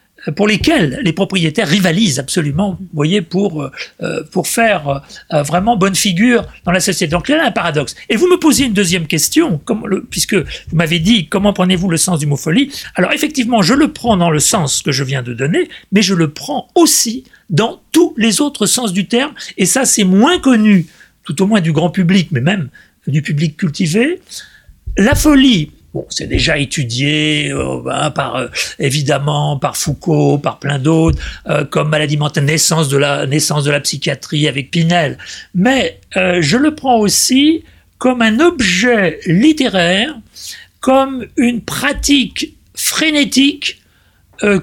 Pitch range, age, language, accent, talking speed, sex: 155-245 Hz, 40-59, French, French, 170 wpm, male